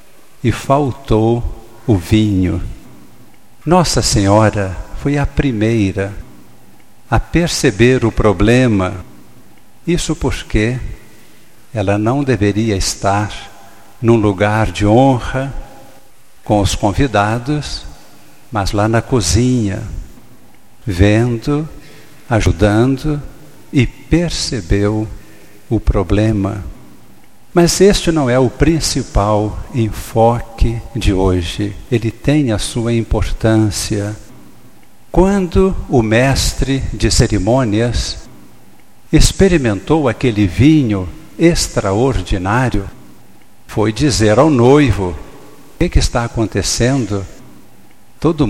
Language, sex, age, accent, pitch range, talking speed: Portuguese, male, 60-79, Brazilian, 105-135 Hz, 85 wpm